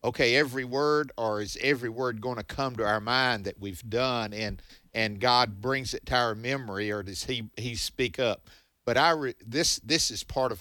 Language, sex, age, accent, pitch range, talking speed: English, male, 50-69, American, 110-140 Hz, 215 wpm